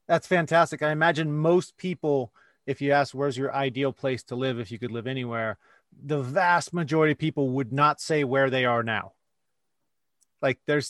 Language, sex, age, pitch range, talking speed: English, male, 30-49, 130-160 Hz, 185 wpm